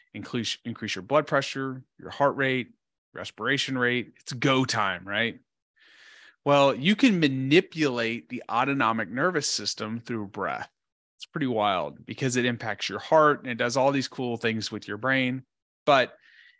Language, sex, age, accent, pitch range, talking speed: English, male, 30-49, American, 115-150 Hz, 155 wpm